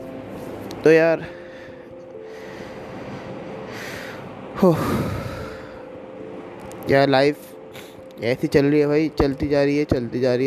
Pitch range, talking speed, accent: 135-170 Hz, 95 wpm, native